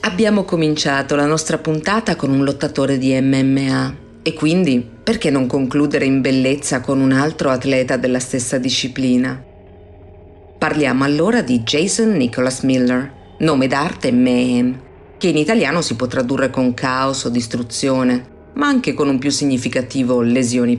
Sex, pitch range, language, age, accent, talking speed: female, 120-150 Hz, Italian, 40-59, native, 145 wpm